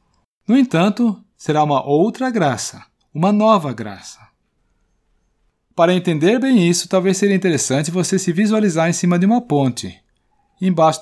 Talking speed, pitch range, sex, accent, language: 135 wpm, 130-200 Hz, male, Brazilian, Portuguese